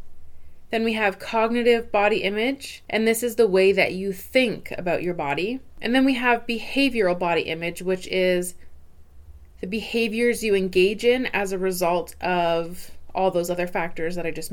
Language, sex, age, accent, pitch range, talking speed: English, female, 20-39, American, 175-225 Hz, 175 wpm